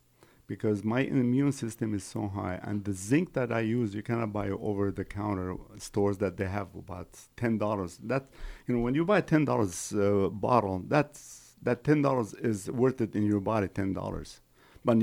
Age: 50-69